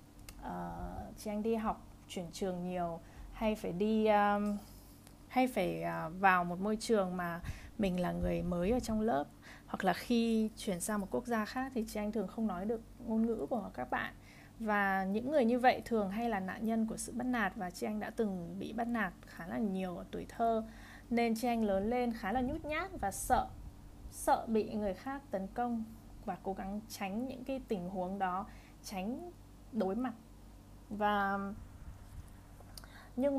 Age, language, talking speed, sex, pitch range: 20-39, Vietnamese, 190 wpm, female, 180-230 Hz